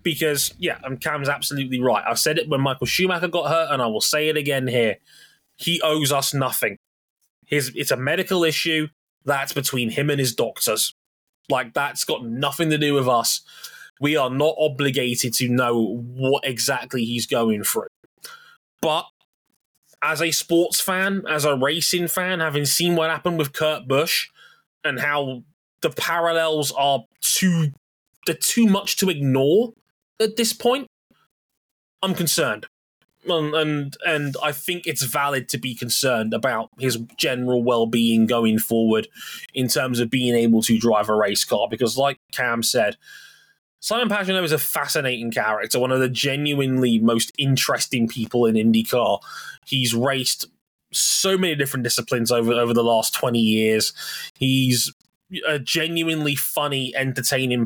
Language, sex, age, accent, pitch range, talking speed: English, male, 20-39, British, 125-165 Hz, 155 wpm